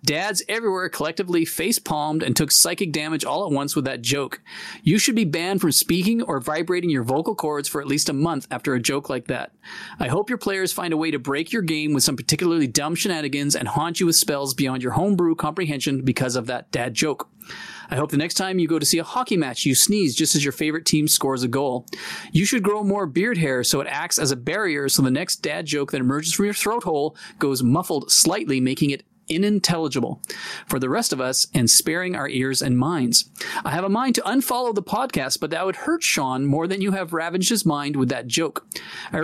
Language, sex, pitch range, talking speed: English, male, 140-195 Hz, 230 wpm